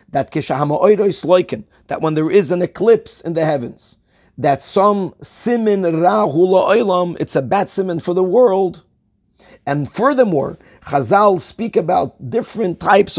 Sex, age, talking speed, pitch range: male, 40-59, 130 wpm, 165-225 Hz